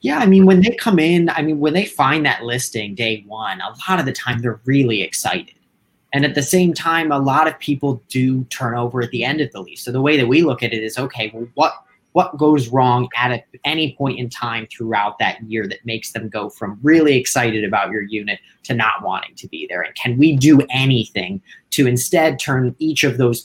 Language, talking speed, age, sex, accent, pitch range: English, 235 wpm, 30-49, male, American, 120-155 Hz